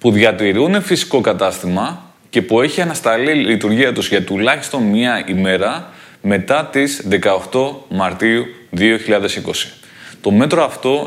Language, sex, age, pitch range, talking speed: Greek, male, 20-39, 110-150 Hz, 125 wpm